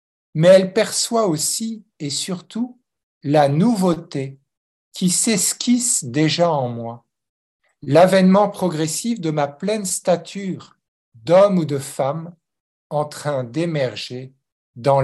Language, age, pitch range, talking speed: French, 50-69, 135-185 Hz, 110 wpm